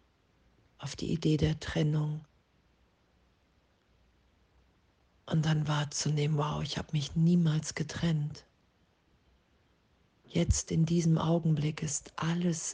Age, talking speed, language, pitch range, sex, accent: 40-59, 95 wpm, German, 140-155 Hz, female, German